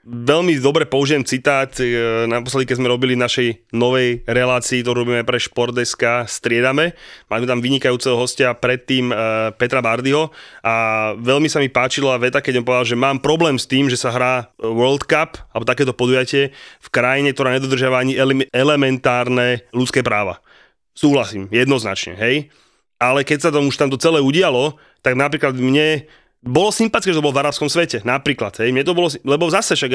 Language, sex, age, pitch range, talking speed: Slovak, male, 30-49, 120-140 Hz, 175 wpm